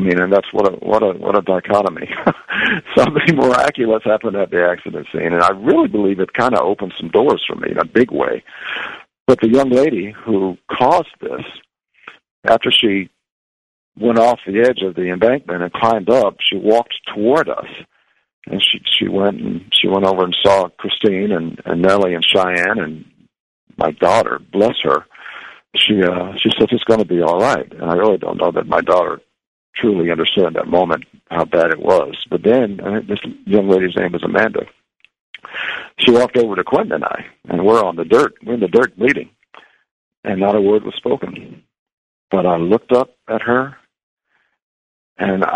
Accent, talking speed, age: American, 190 wpm, 50-69